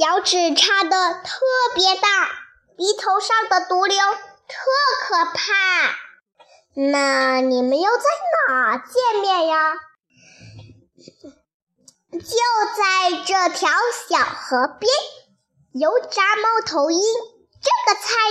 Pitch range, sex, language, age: 310-445 Hz, male, Chinese, 20-39